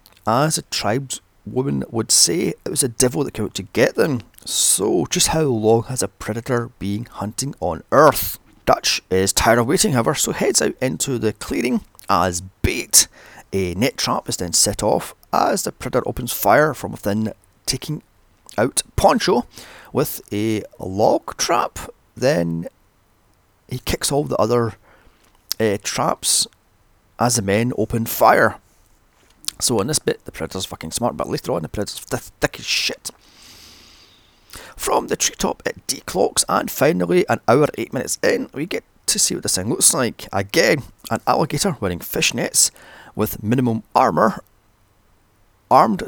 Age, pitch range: 30-49, 100-125 Hz